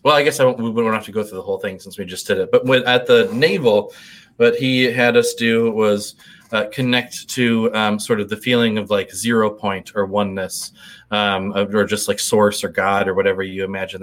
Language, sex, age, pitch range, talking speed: English, male, 30-49, 105-135 Hz, 235 wpm